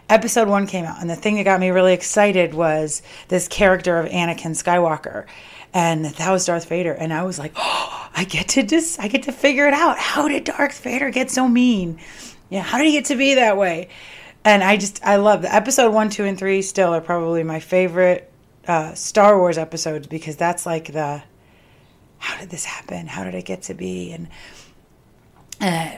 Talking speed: 205 wpm